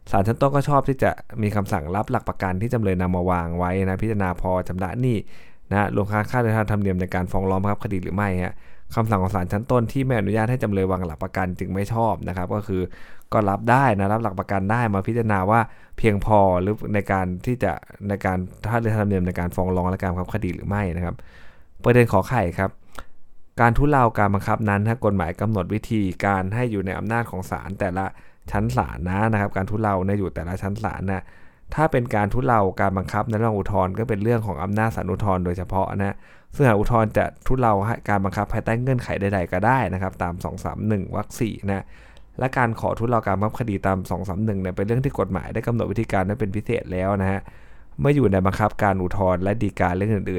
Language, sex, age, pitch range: Thai, male, 20-39, 95-110 Hz